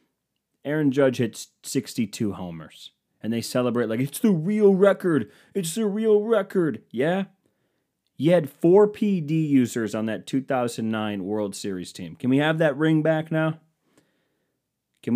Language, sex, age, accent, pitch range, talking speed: English, male, 30-49, American, 105-135 Hz, 145 wpm